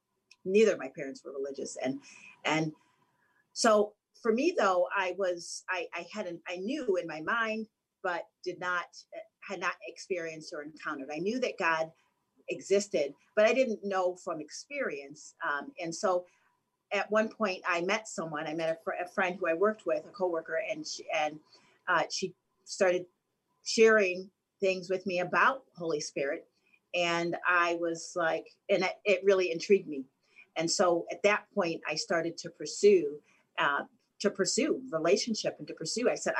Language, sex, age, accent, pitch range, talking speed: English, female, 40-59, American, 170-210 Hz, 170 wpm